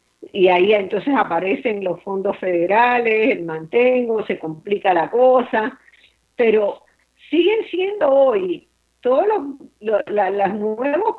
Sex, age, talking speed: female, 50-69, 125 wpm